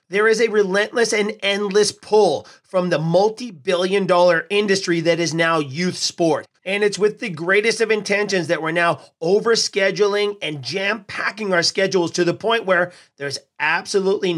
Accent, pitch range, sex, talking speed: American, 170-205 Hz, male, 160 wpm